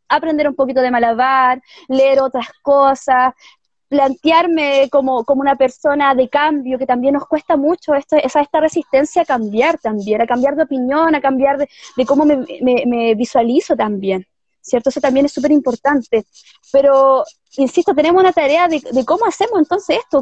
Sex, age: female, 20-39